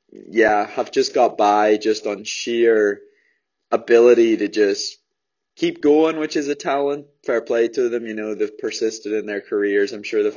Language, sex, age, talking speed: English, male, 20-39, 180 wpm